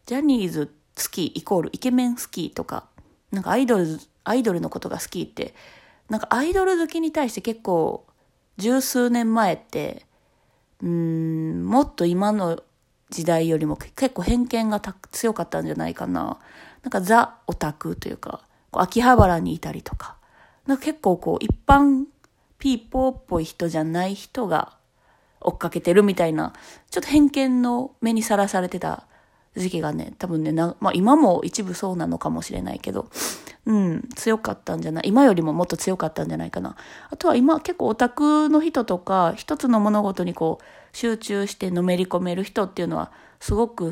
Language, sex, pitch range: Japanese, female, 170-245 Hz